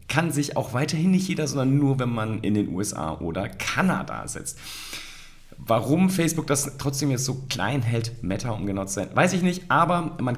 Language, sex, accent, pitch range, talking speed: German, male, German, 90-115 Hz, 185 wpm